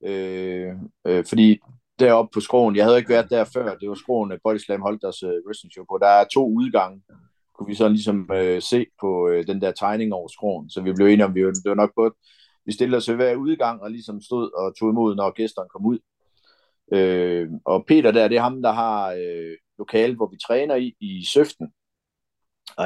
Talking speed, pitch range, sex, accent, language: 210 wpm, 100-125 Hz, male, native, Danish